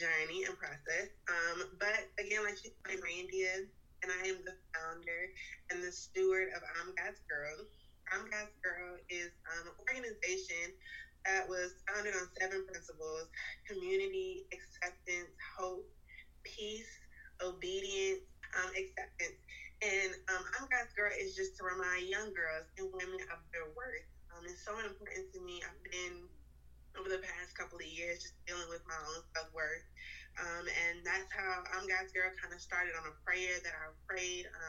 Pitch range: 170-190 Hz